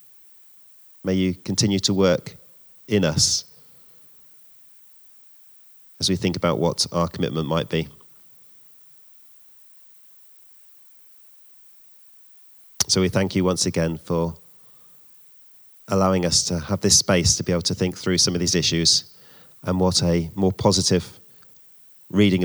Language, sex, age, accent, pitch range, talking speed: English, male, 30-49, British, 85-95 Hz, 120 wpm